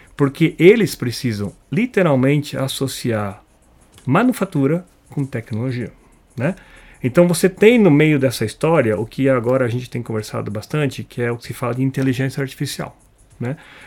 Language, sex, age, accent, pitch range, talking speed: Portuguese, male, 40-59, Brazilian, 120-170 Hz, 145 wpm